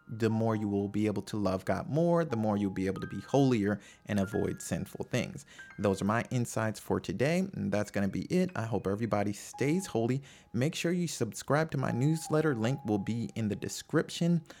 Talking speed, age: 215 wpm, 30-49